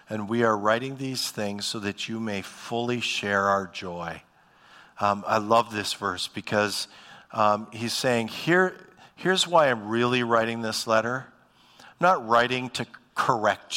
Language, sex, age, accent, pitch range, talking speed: English, male, 50-69, American, 105-150 Hz, 155 wpm